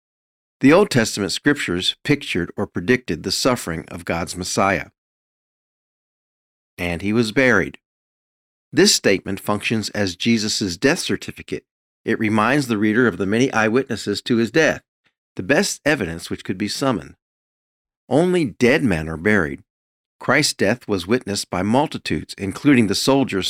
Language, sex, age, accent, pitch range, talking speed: English, male, 50-69, American, 90-120 Hz, 140 wpm